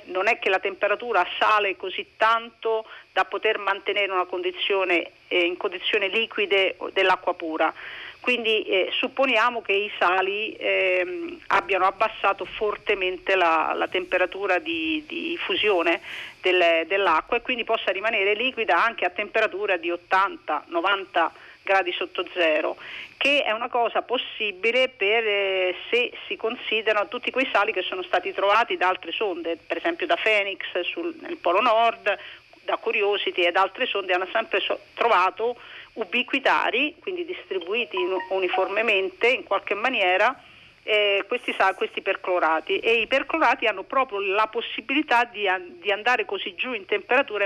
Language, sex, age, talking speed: Italian, female, 40-59, 145 wpm